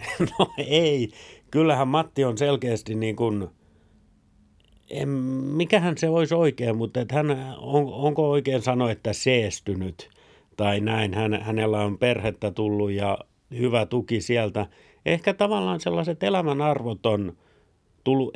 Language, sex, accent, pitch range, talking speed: Finnish, male, native, 110-145 Hz, 125 wpm